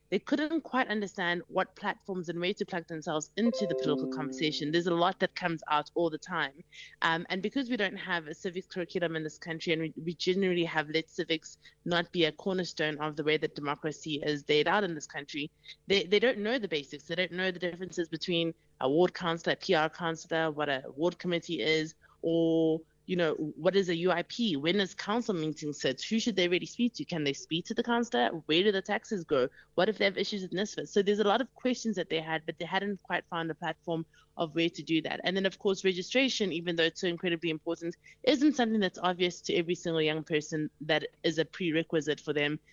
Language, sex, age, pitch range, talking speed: English, female, 20-39, 155-190 Hz, 230 wpm